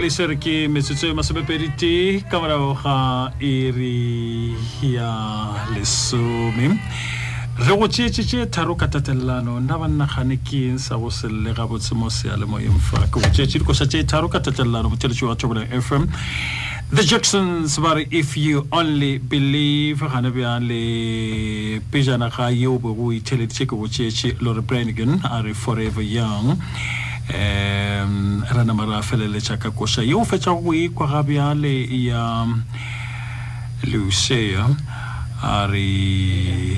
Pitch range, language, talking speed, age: 110-130 Hz, English, 50 wpm, 40-59